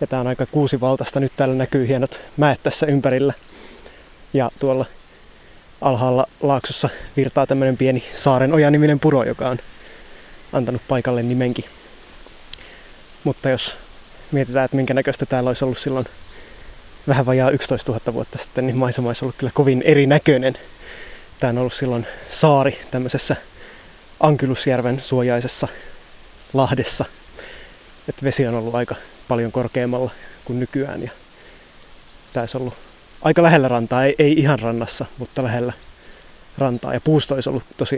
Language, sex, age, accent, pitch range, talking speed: Finnish, male, 20-39, native, 125-140 Hz, 140 wpm